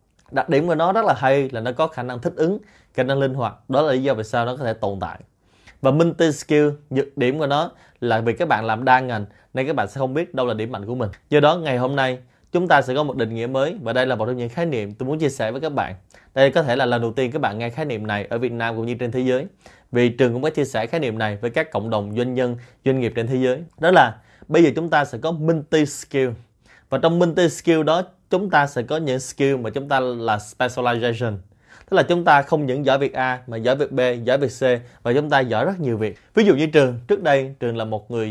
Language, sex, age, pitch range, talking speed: Vietnamese, male, 20-39, 115-145 Hz, 285 wpm